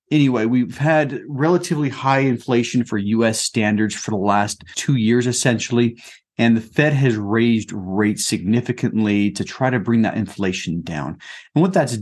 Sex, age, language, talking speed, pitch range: male, 30-49, English, 160 wpm, 110-135 Hz